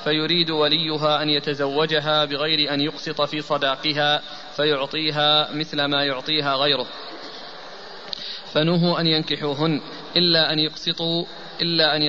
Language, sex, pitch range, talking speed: Arabic, male, 145-160 Hz, 105 wpm